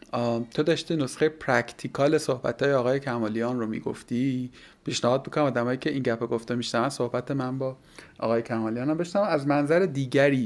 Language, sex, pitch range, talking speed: Persian, male, 120-155 Hz, 160 wpm